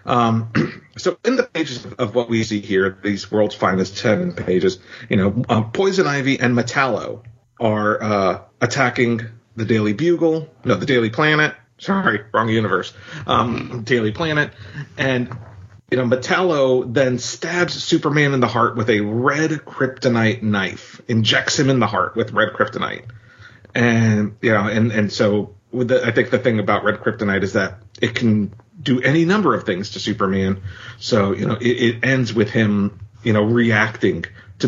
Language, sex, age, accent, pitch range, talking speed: English, male, 40-59, American, 110-140 Hz, 170 wpm